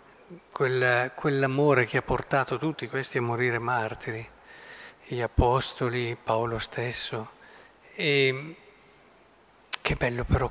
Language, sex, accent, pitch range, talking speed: Italian, male, native, 125-155 Hz, 90 wpm